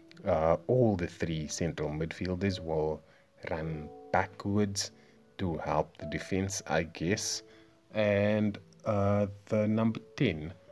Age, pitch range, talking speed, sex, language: 30-49, 80-105 Hz, 110 wpm, male, English